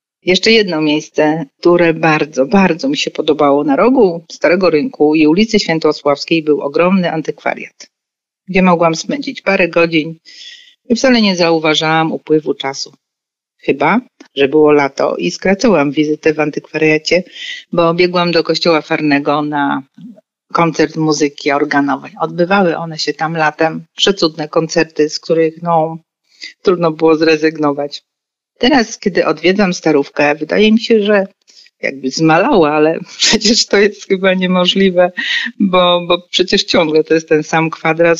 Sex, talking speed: female, 135 wpm